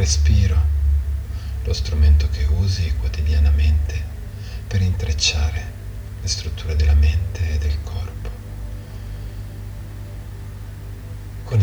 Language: Italian